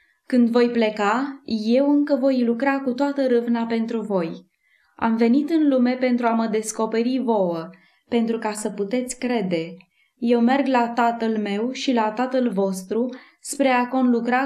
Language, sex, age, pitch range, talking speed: English, female, 20-39, 210-250 Hz, 160 wpm